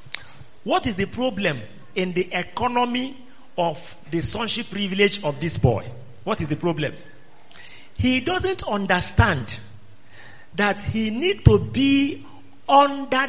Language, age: English, 40-59